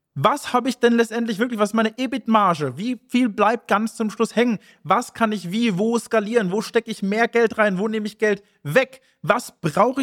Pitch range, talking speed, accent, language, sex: 205-245 Hz, 215 wpm, German, German, male